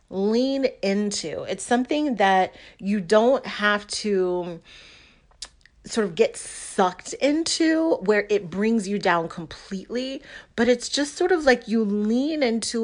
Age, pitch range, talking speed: 40-59, 190-240 Hz, 135 wpm